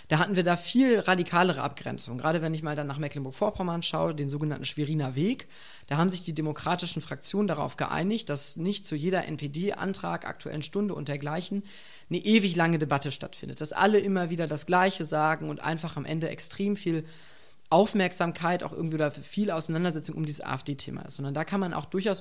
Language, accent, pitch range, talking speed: German, German, 155-190 Hz, 185 wpm